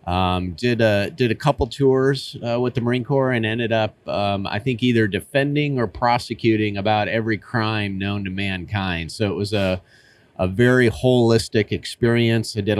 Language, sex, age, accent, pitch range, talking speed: English, male, 30-49, American, 100-120 Hz, 180 wpm